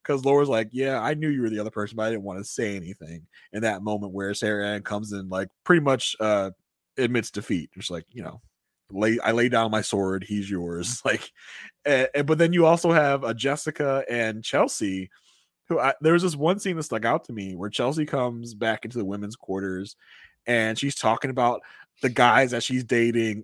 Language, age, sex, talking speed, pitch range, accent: English, 20-39, male, 215 wpm, 105-150 Hz, American